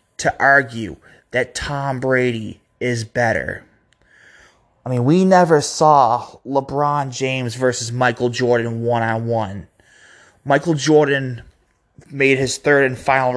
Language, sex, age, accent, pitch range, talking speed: English, male, 20-39, American, 115-135 Hz, 110 wpm